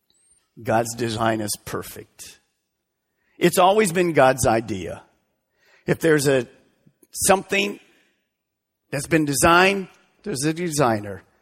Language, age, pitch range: English, 50-69, 125-175 Hz